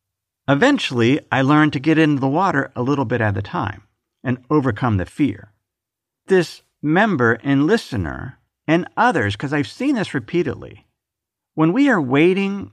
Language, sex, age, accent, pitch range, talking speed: English, male, 50-69, American, 105-150 Hz, 155 wpm